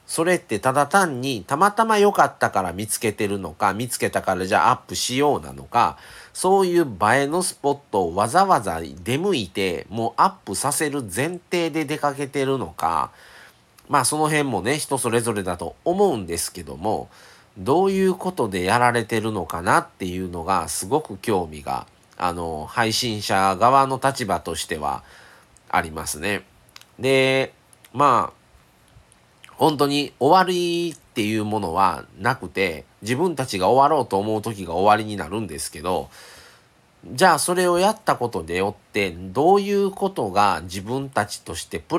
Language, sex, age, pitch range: Japanese, male, 40-59, 95-145 Hz